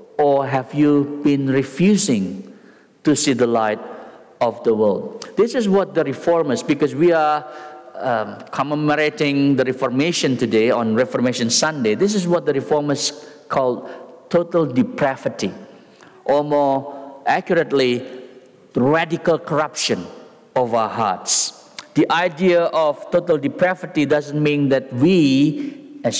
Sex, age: male, 50-69